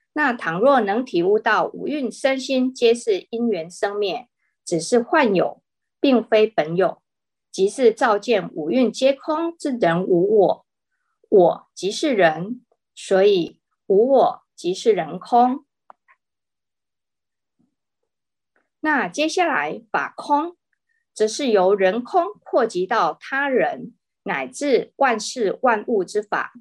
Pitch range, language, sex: 220-345 Hz, Chinese, female